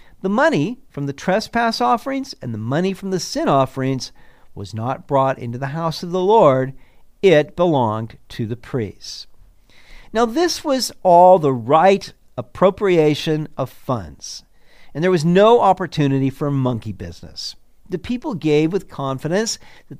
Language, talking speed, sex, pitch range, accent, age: English, 150 wpm, male, 120-185 Hz, American, 50-69